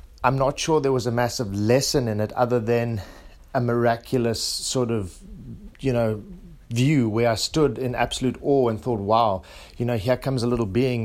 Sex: male